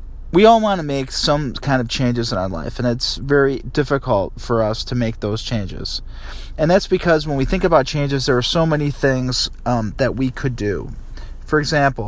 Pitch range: 115-140 Hz